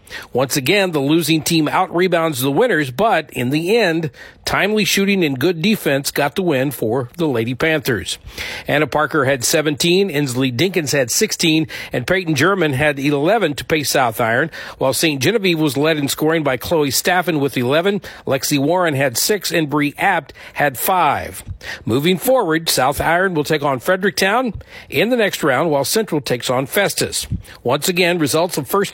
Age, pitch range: 50-69, 145-185 Hz